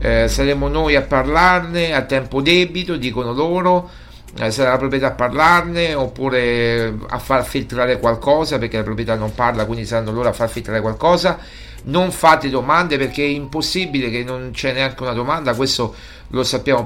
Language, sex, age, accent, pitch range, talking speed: Italian, male, 50-69, native, 120-155 Hz, 170 wpm